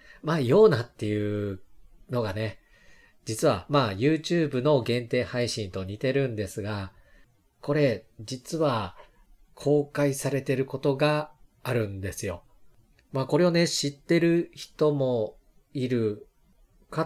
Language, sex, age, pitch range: Japanese, male, 40-59, 105-145 Hz